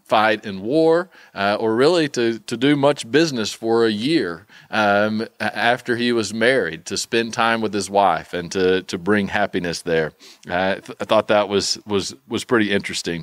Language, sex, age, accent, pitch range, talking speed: English, male, 40-59, American, 100-130 Hz, 185 wpm